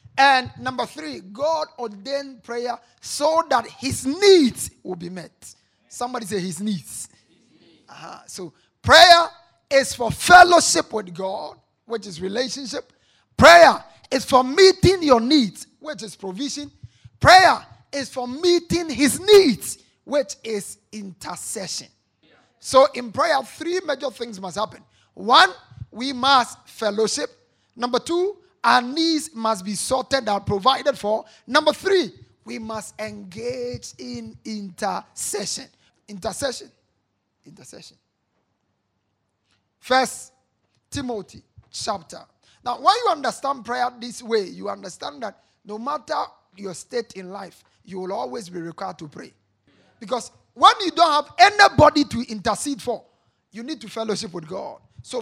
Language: English